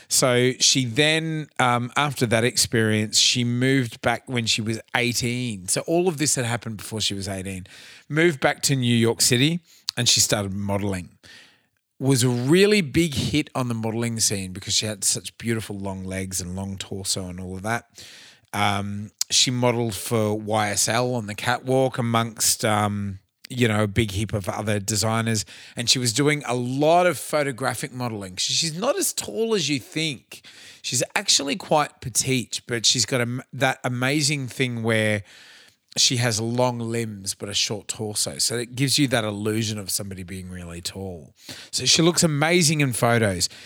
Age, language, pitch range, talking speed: 30-49, English, 105-130 Hz, 175 wpm